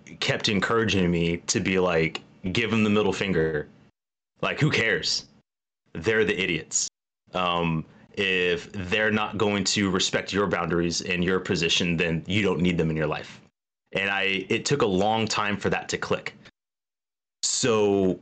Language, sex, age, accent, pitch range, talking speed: English, male, 30-49, American, 90-105 Hz, 160 wpm